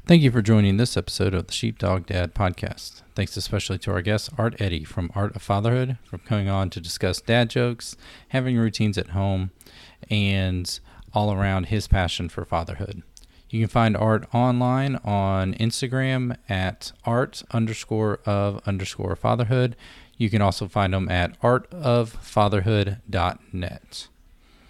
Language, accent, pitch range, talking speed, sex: English, American, 95-115 Hz, 145 wpm, male